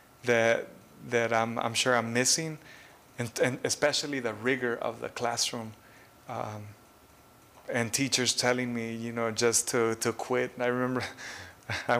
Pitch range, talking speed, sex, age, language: 115-130 Hz, 150 wpm, male, 20-39, English